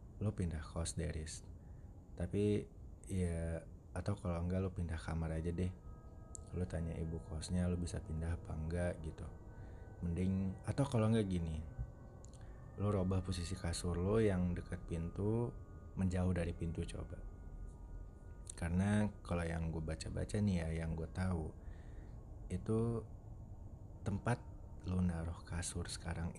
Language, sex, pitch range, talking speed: Indonesian, male, 85-100 Hz, 130 wpm